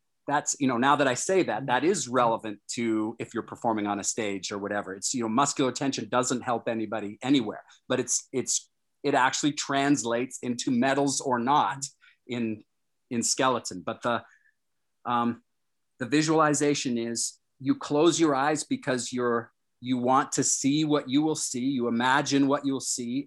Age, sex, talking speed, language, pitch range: 40-59, male, 175 wpm, English, 120-140 Hz